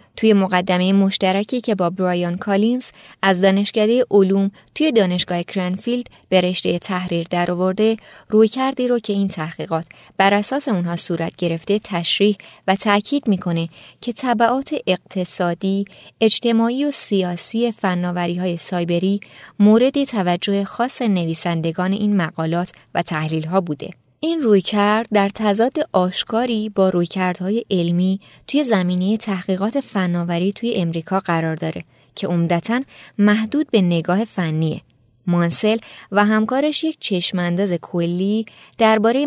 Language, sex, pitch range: Persian, female, 175-220 Hz